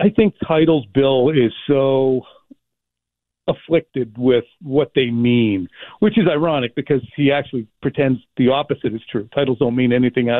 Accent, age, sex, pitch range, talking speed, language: American, 50-69, male, 125-155 Hz, 150 wpm, English